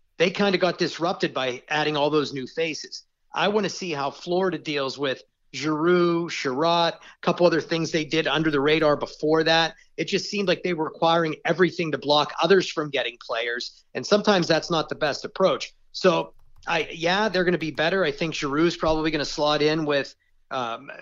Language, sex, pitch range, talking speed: English, male, 145-165 Hz, 205 wpm